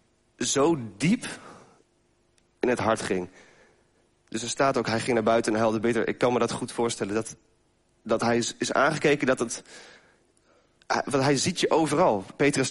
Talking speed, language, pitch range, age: 180 wpm, Dutch, 105-125 Hz, 30-49